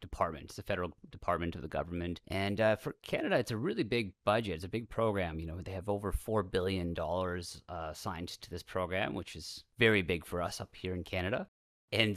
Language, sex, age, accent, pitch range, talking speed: English, male, 30-49, American, 90-110 Hz, 210 wpm